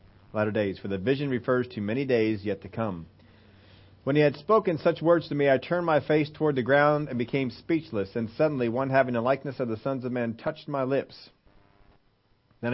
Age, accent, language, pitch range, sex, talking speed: 40-59, American, English, 100-130 Hz, male, 210 wpm